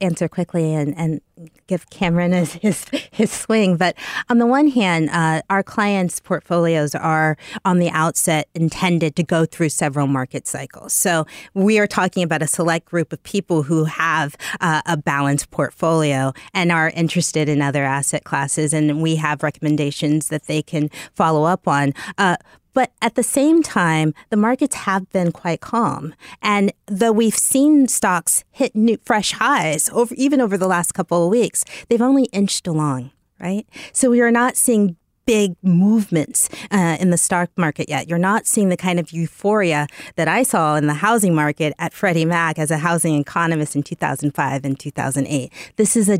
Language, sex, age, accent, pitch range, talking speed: English, female, 30-49, American, 155-200 Hz, 175 wpm